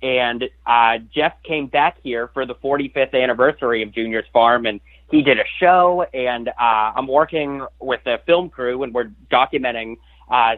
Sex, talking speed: male, 170 wpm